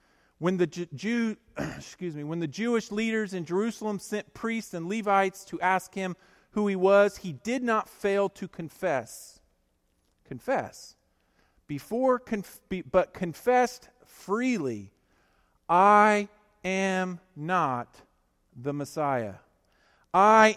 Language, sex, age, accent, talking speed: English, male, 40-59, American, 115 wpm